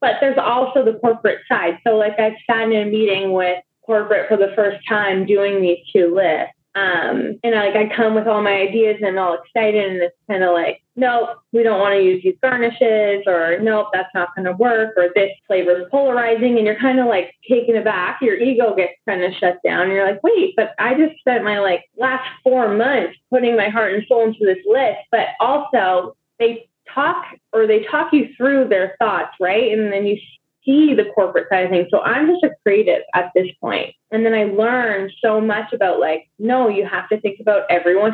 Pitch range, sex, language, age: 195-245 Hz, female, English, 20-39